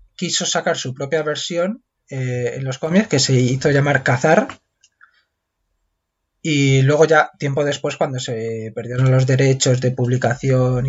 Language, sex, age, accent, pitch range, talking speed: Spanish, male, 20-39, Spanish, 125-145 Hz, 145 wpm